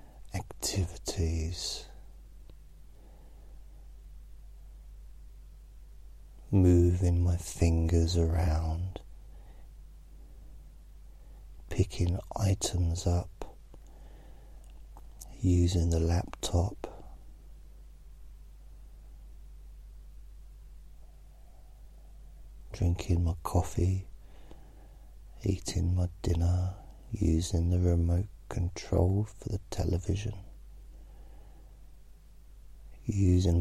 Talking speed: 45 wpm